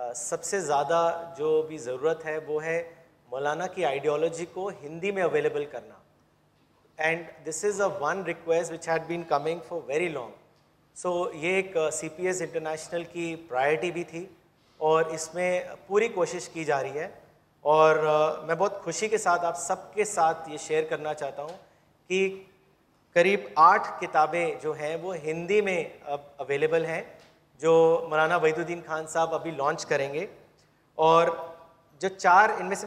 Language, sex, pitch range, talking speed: Urdu, male, 155-190 Hz, 170 wpm